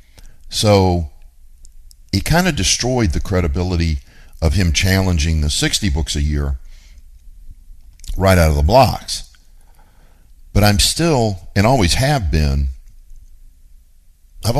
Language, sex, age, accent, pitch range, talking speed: English, male, 50-69, American, 70-90 Hz, 115 wpm